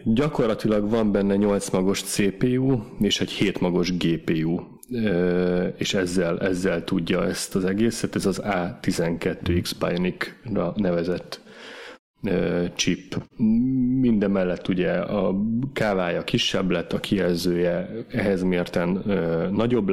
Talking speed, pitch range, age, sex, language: 110 wpm, 95-110 Hz, 30-49, male, Hungarian